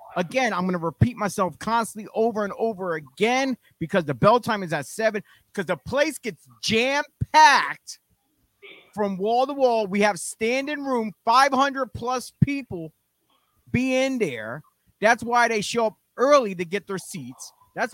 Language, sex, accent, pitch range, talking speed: English, male, American, 185-250 Hz, 155 wpm